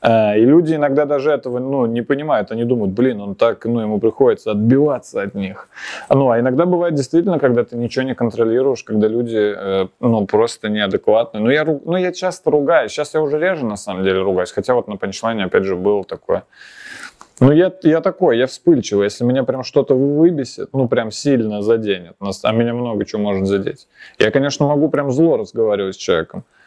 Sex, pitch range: male, 110-140 Hz